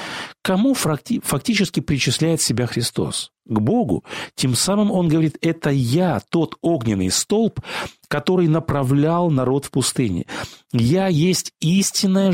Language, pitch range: Russian, 125-180 Hz